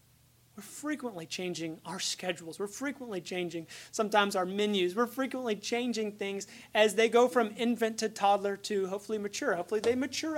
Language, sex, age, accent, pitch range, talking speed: English, male, 30-49, American, 160-205 Hz, 160 wpm